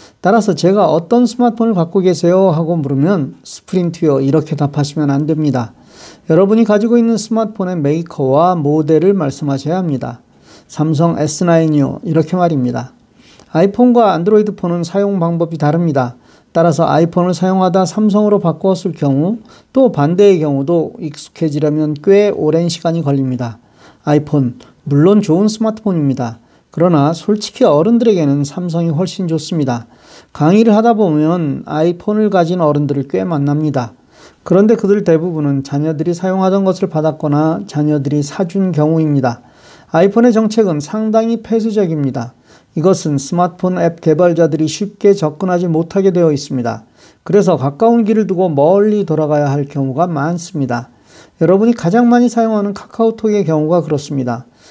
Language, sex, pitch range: Korean, male, 150-195 Hz